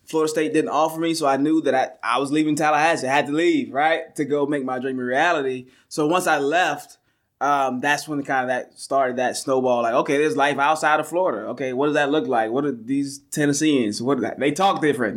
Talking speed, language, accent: 250 wpm, English, American